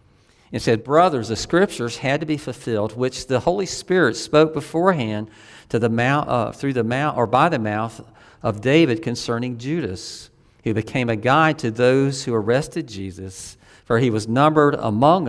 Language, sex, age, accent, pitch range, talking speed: English, male, 50-69, American, 110-140 Hz, 175 wpm